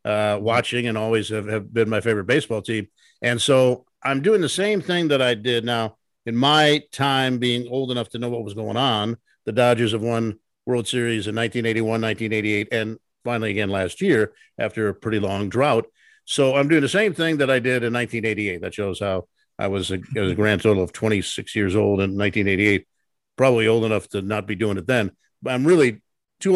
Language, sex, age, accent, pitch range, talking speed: English, male, 50-69, American, 110-140 Hz, 210 wpm